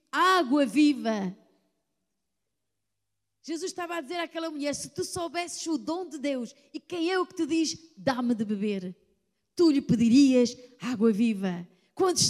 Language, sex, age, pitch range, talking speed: Portuguese, female, 20-39, 210-295 Hz, 150 wpm